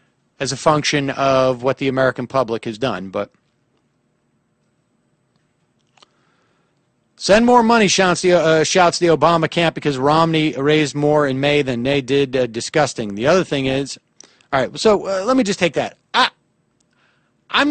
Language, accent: English, American